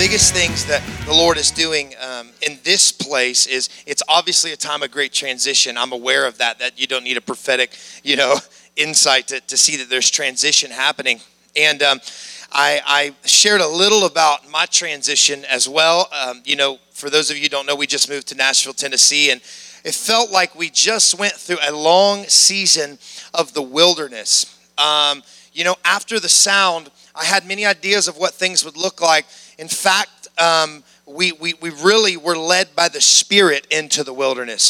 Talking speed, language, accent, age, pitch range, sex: 190 wpm, English, American, 30-49, 145-190 Hz, male